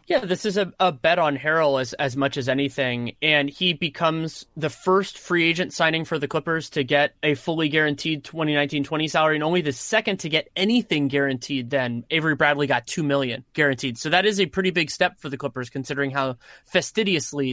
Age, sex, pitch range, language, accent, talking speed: 30-49, male, 140-165 Hz, English, American, 200 wpm